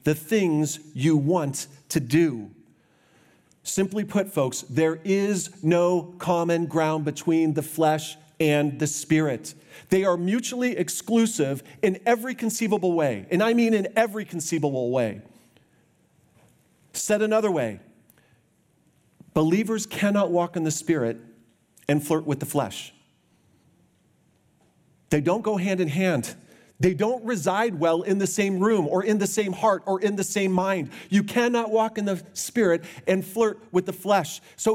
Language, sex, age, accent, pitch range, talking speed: English, male, 40-59, American, 160-215 Hz, 145 wpm